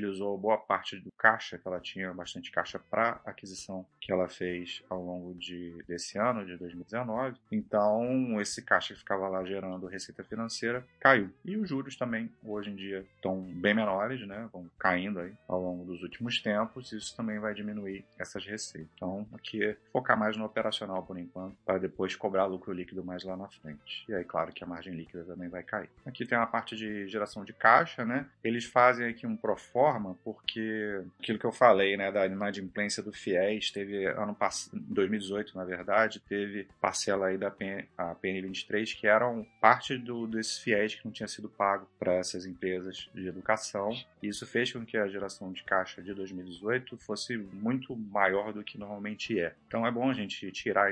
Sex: male